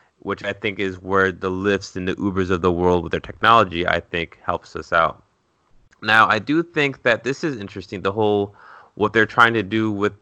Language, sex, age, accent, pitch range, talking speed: English, male, 20-39, American, 95-110 Hz, 215 wpm